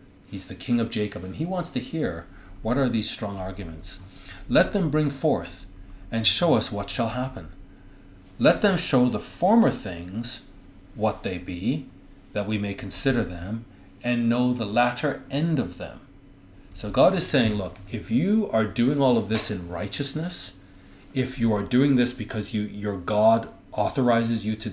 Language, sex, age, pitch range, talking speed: English, male, 40-59, 95-125 Hz, 175 wpm